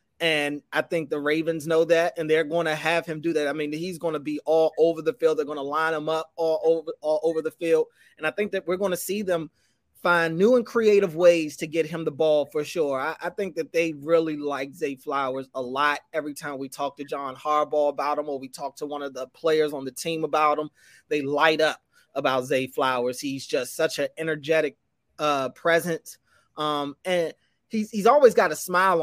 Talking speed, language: 230 wpm, English